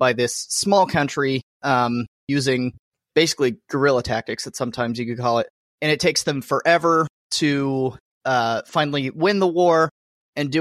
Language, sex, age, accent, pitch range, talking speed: English, male, 30-49, American, 130-155 Hz, 160 wpm